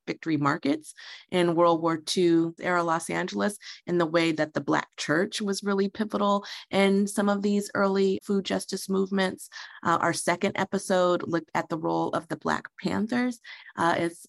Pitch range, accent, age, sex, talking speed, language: 165-200 Hz, American, 30-49, female, 170 wpm, English